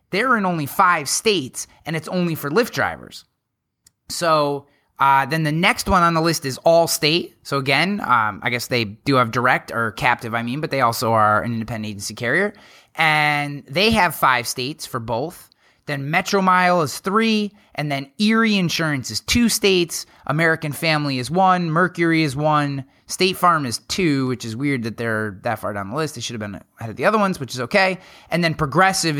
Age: 30-49